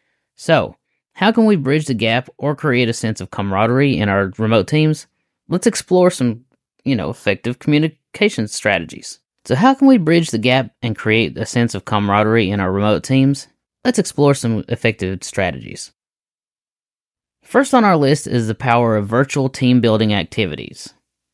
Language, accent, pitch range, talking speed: English, American, 105-140 Hz, 165 wpm